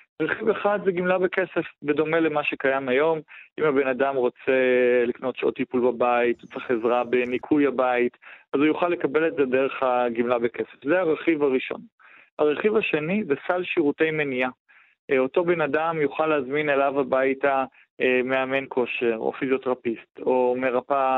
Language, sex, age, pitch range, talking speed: Hebrew, male, 20-39, 125-155 Hz, 150 wpm